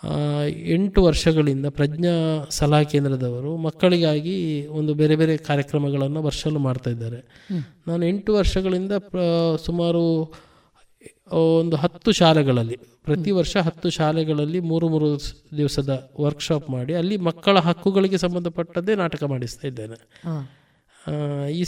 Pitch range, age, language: 145-180 Hz, 20-39, Kannada